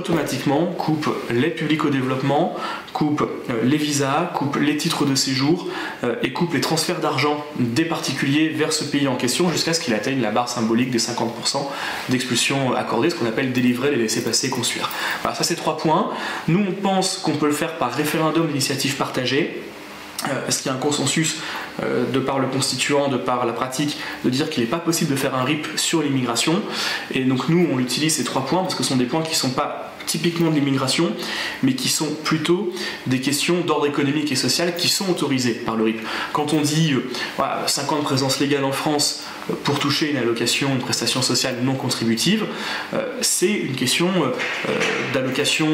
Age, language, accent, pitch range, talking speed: 20-39, French, French, 125-155 Hz, 200 wpm